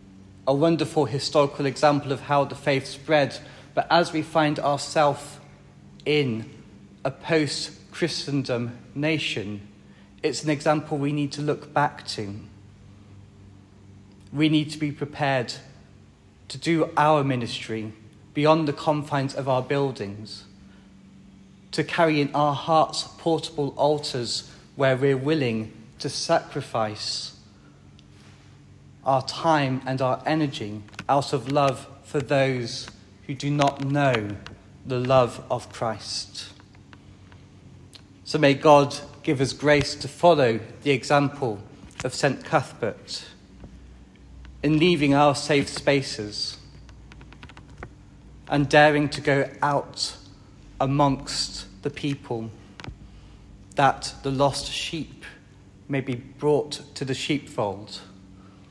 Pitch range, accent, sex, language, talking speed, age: 105-145 Hz, British, male, English, 110 wpm, 30-49